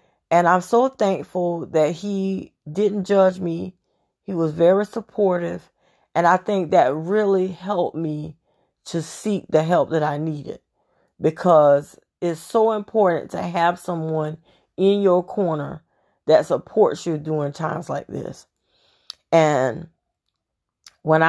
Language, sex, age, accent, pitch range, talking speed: English, female, 40-59, American, 150-185 Hz, 130 wpm